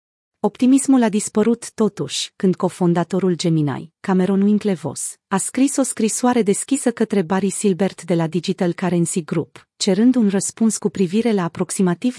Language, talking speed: Romanian, 145 wpm